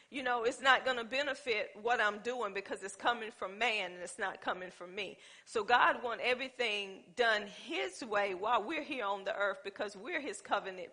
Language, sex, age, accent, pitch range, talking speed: English, female, 40-59, American, 215-275 Hz, 210 wpm